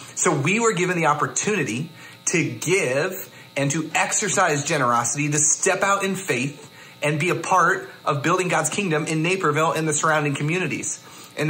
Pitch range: 145-180 Hz